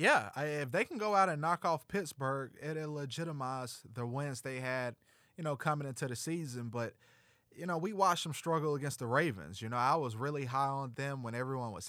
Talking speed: 215 wpm